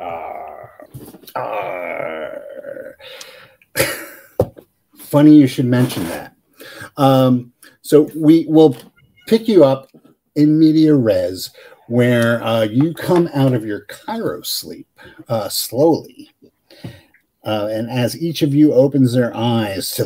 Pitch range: 115-150 Hz